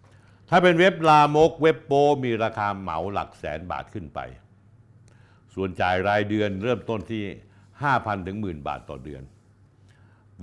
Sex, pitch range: male, 100-125 Hz